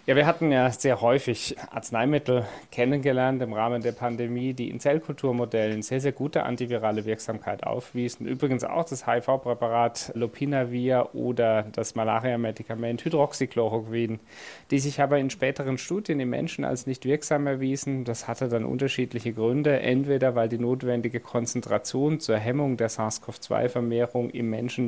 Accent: German